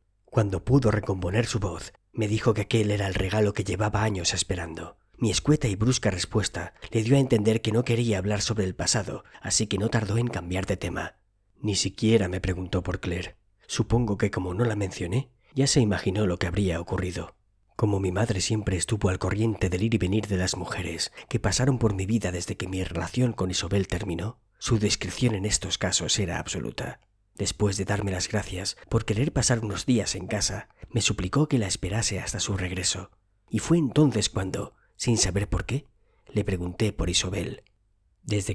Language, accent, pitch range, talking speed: Spanish, Spanish, 95-110 Hz, 195 wpm